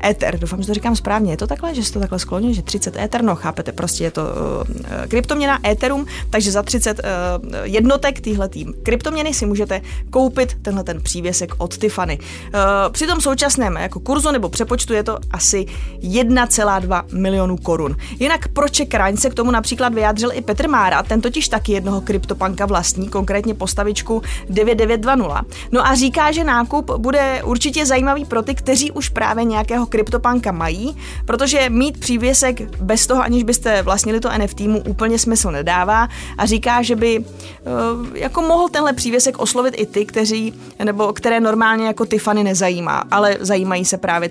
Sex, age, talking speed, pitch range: female, 20-39, 170 wpm, 200-250 Hz